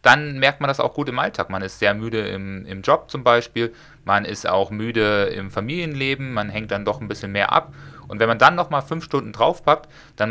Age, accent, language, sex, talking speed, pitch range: 30-49, German, German, male, 235 wpm, 100-115 Hz